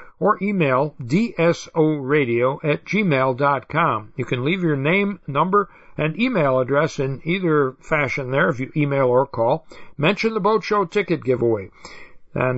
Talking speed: 145 wpm